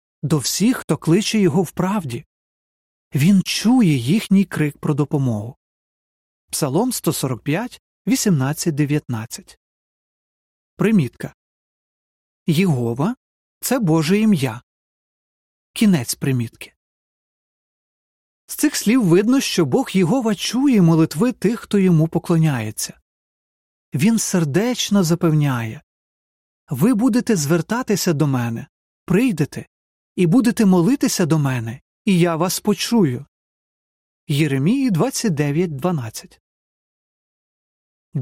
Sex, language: male, Ukrainian